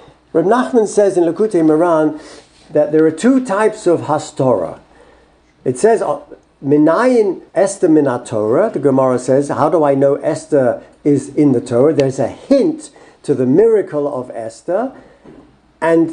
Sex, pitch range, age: male, 145-205 Hz, 60-79